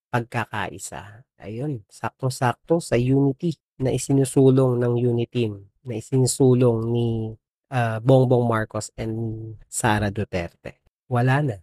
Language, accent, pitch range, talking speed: Filipino, native, 110-130 Hz, 110 wpm